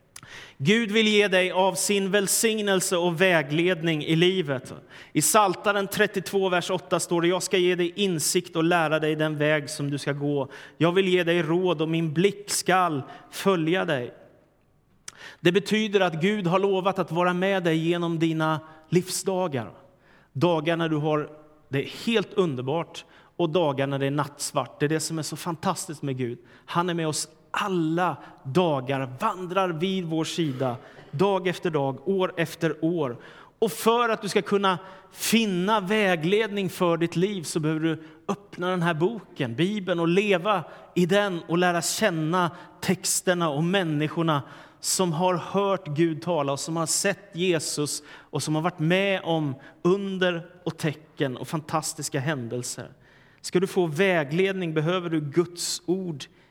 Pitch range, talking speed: 155-185 Hz, 160 wpm